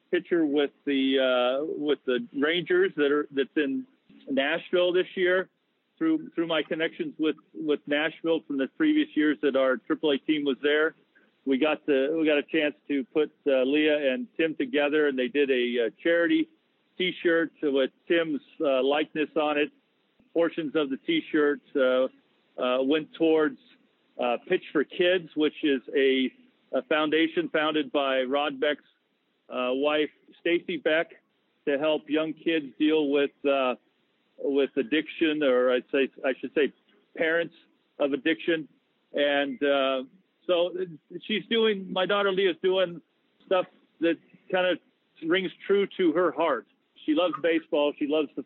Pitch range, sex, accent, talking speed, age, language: 140-175 Hz, male, American, 155 wpm, 50-69, English